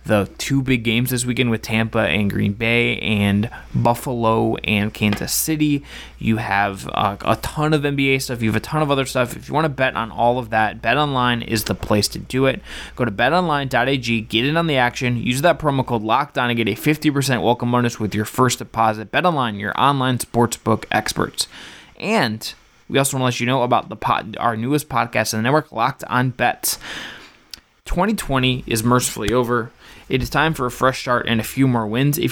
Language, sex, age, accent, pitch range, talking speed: English, male, 20-39, American, 110-135 Hz, 215 wpm